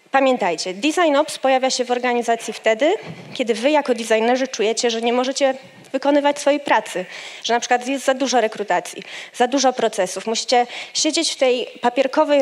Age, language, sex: 20-39, Polish, female